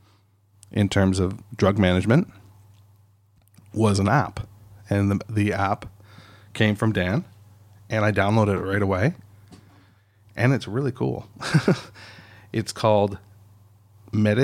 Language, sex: English, male